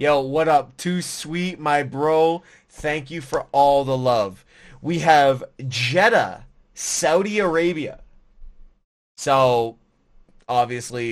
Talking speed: 110 wpm